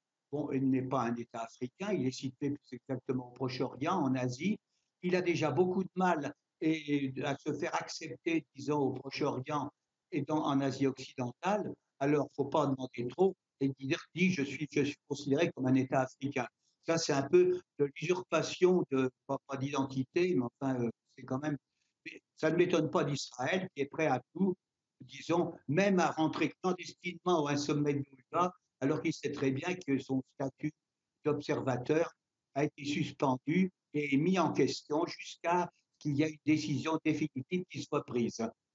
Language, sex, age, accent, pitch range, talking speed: French, male, 60-79, French, 135-160 Hz, 180 wpm